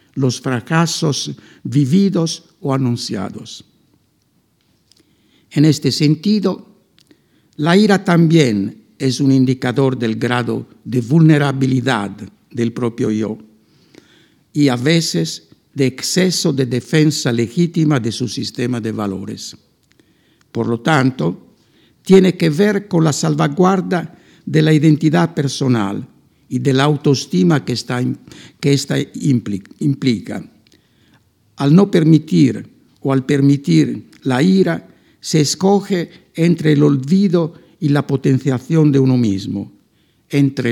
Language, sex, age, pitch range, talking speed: Spanish, male, 60-79, 125-160 Hz, 110 wpm